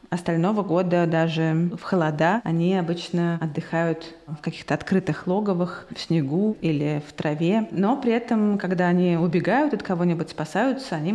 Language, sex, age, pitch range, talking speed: Russian, female, 20-39, 165-195 Hz, 145 wpm